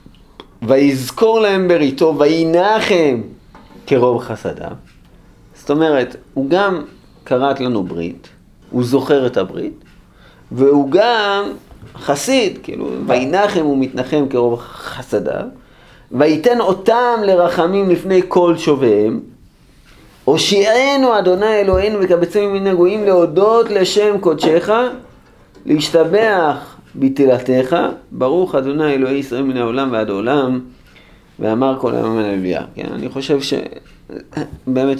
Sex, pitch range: male, 125-180 Hz